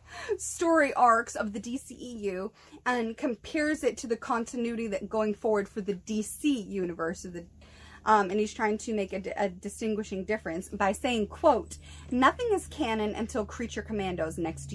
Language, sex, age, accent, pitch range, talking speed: English, female, 30-49, American, 205-280 Hz, 165 wpm